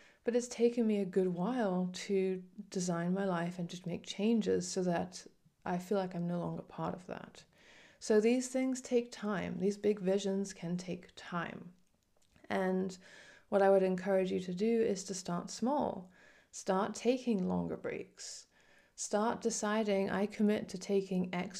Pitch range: 180-215 Hz